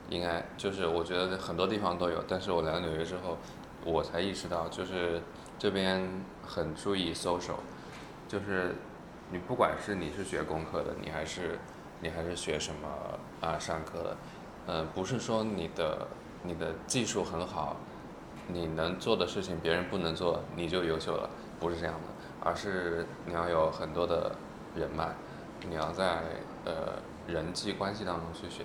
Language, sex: English, male